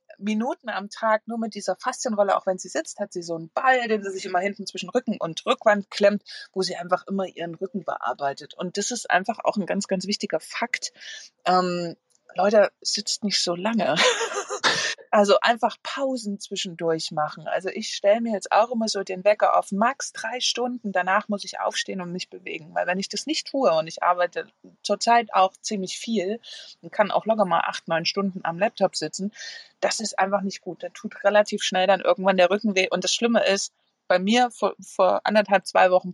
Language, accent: German, German